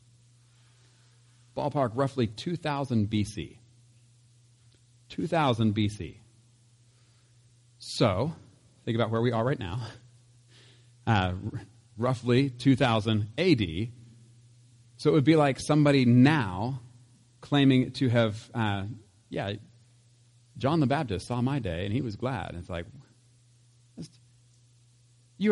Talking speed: 100 wpm